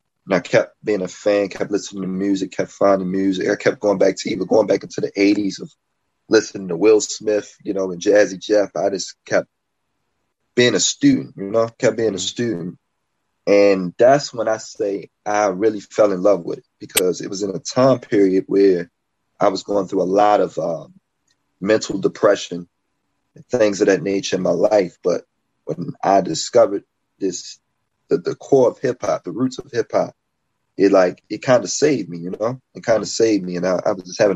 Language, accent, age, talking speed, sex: English, American, 30-49, 205 wpm, male